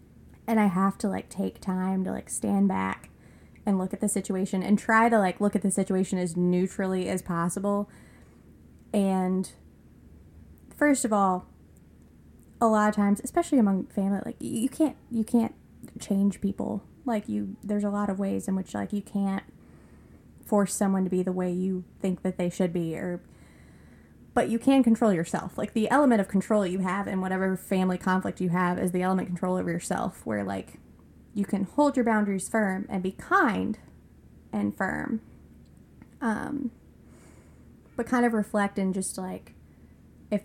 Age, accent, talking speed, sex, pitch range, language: 20-39, American, 175 wpm, female, 180-205 Hz, English